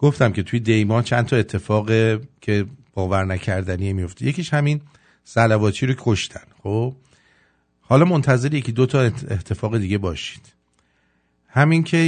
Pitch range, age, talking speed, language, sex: 100-135 Hz, 50-69, 130 wpm, English, male